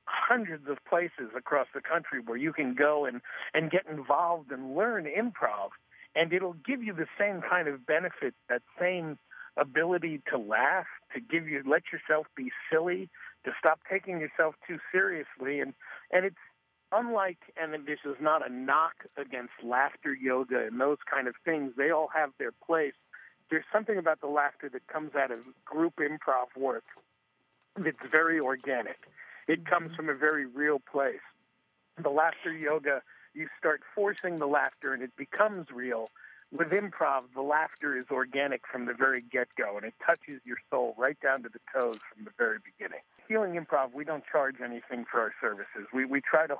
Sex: male